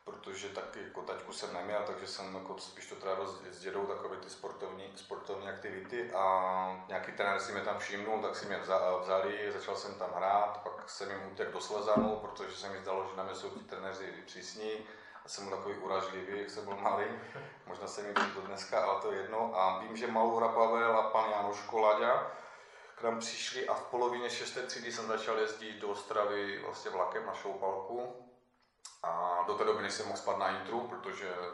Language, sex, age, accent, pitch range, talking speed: Czech, male, 30-49, native, 90-110 Hz, 200 wpm